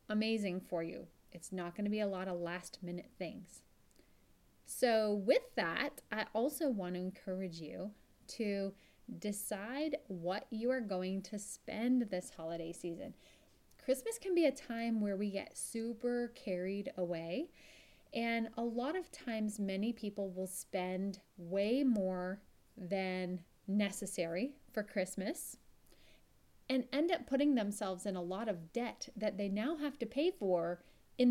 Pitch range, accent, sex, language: 190-260 Hz, American, female, English